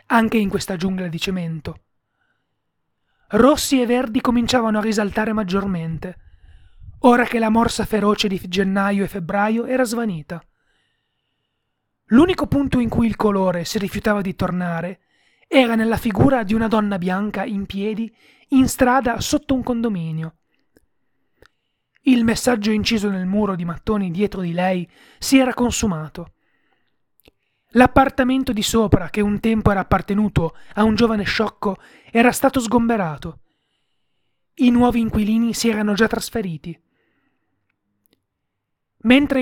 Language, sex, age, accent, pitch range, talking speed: Italian, male, 30-49, native, 185-245 Hz, 130 wpm